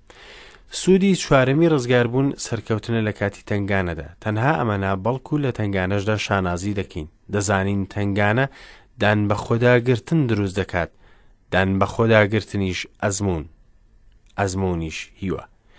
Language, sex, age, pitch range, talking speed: English, male, 30-49, 95-120 Hz, 125 wpm